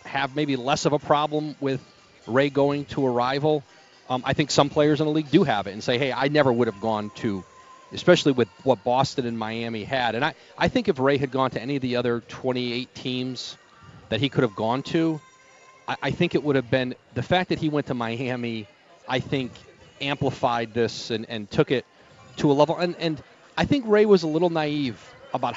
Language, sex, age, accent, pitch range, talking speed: English, male, 40-59, American, 120-155 Hz, 225 wpm